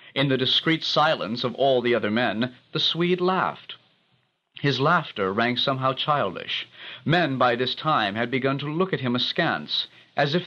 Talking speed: 170 wpm